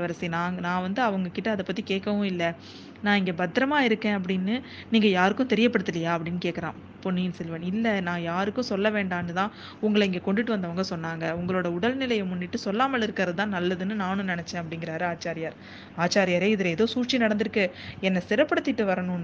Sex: female